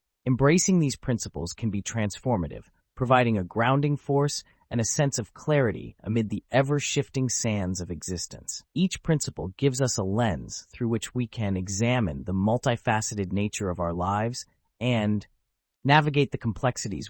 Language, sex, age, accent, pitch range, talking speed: English, male, 30-49, American, 100-135 Hz, 145 wpm